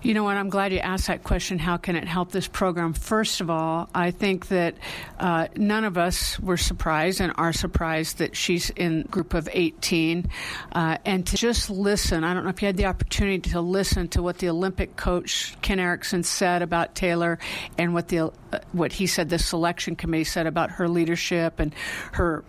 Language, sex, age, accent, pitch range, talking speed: English, female, 50-69, American, 165-190 Hz, 205 wpm